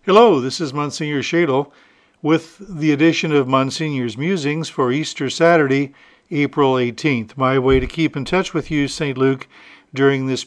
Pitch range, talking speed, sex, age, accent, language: 135-170 Hz, 160 wpm, male, 50-69, American, English